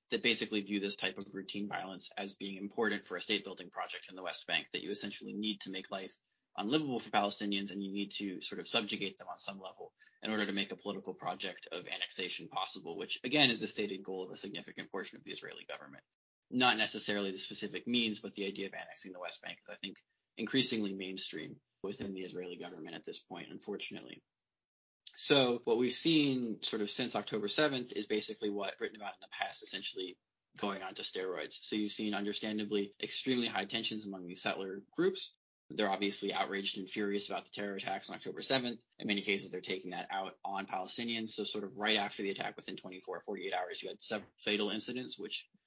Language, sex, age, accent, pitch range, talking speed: English, male, 20-39, American, 100-115 Hz, 215 wpm